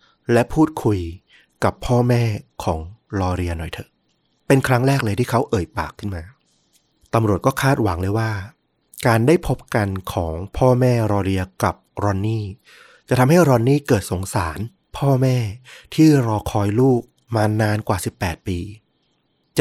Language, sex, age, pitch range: Thai, male, 20-39, 100-125 Hz